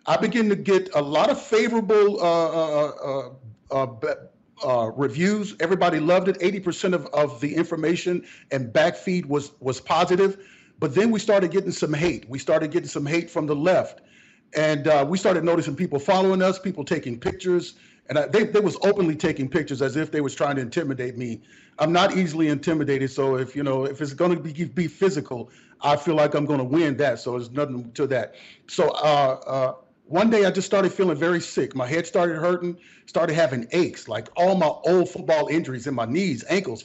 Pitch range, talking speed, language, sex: 135-180 Hz, 205 wpm, English, male